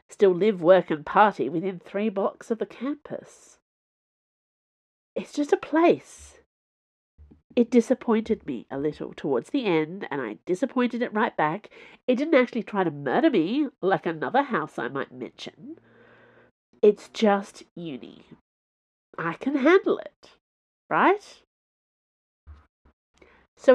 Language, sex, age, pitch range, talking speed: English, female, 40-59, 175-275 Hz, 130 wpm